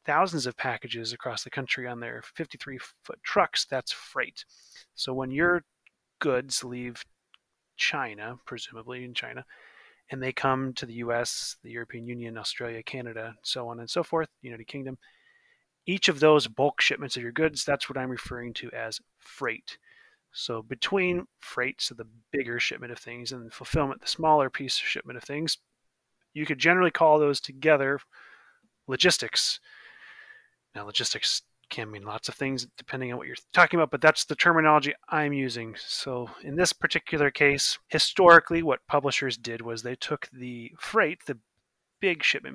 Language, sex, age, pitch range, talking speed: English, male, 30-49, 120-155 Hz, 160 wpm